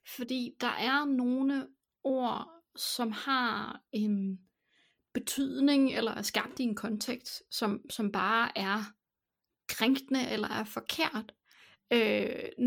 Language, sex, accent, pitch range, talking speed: Danish, female, native, 220-270 Hz, 115 wpm